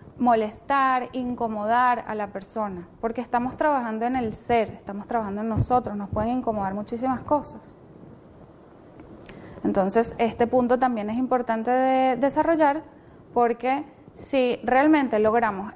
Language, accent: Spanish, Venezuelan